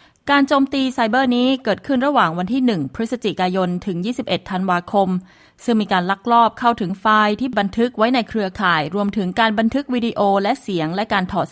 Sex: female